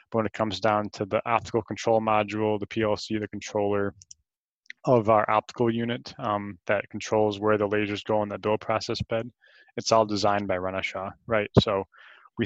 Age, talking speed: 20-39, 190 wpm